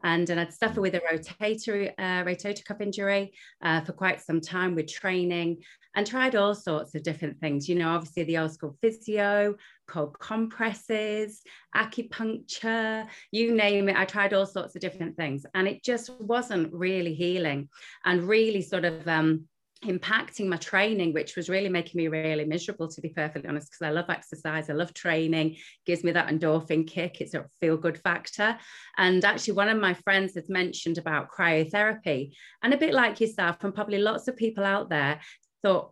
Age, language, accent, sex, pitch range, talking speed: 30-49, English, British, female, 165-205 Hz, 185 wpm